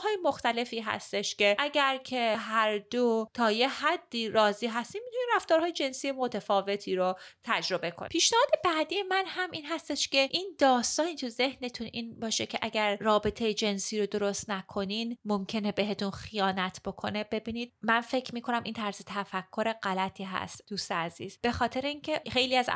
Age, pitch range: 30-49, 195-255 Hz